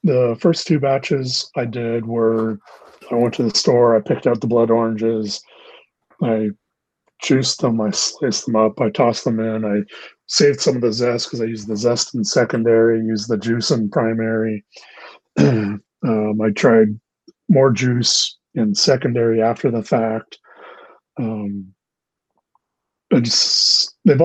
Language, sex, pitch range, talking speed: English, male, 110-120 Hz, 150 wpm